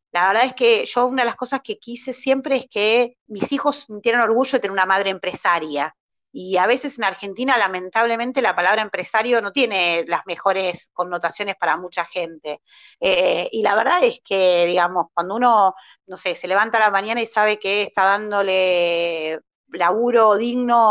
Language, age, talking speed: Spanish, 30-49, 180 wpm